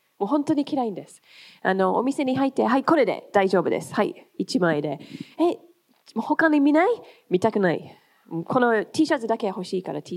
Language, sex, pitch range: Japanese, female, 185-290 Hz